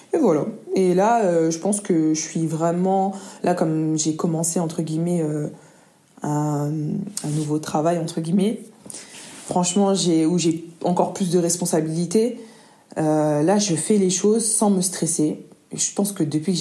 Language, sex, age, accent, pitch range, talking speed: French, female, 20-39, French, 155-185 Hz, 170 wpm